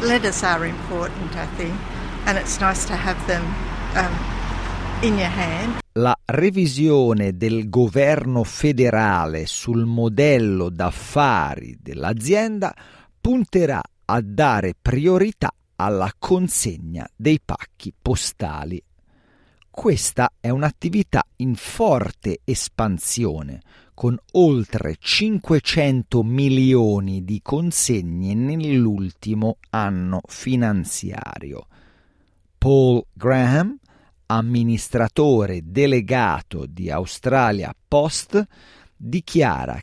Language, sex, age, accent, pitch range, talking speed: Italian, male, 50-69, native, 105-145 Hz, 60 wpm